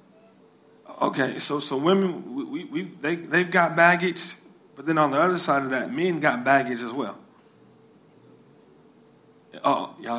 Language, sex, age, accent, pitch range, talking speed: English, male, 30-49, American, 195-245 Hz, 155 wpm